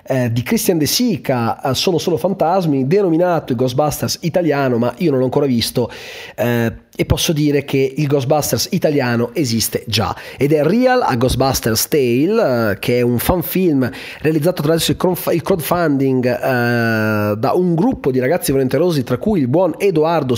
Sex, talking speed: male, 165 wpm